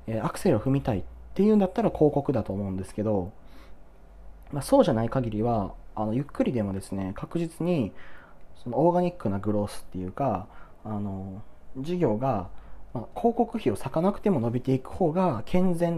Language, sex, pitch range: Japanese, male, 100-170 Hz